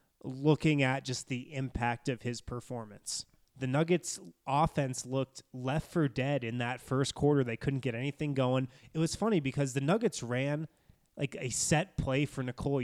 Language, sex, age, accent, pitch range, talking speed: English, male, 20-39, American, 125-145 Hz, 175 wpm